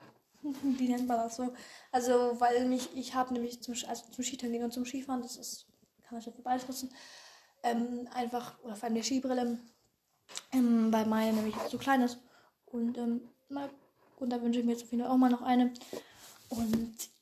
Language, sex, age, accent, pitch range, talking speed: German, female, 10-29, German, 240-270 Hz, 195 wpm